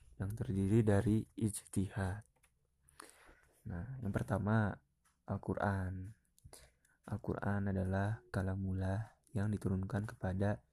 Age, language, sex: 20-39, Indonesian, male